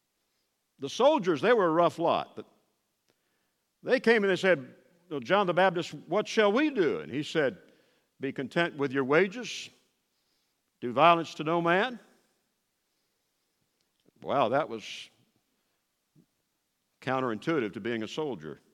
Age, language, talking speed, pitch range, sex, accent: 60-79, English, 130 wpm, 145-230 Hz, male, American